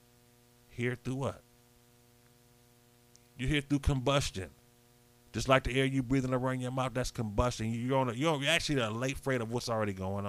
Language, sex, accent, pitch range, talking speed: English, male, American, 120-150 Hz, 175 wpm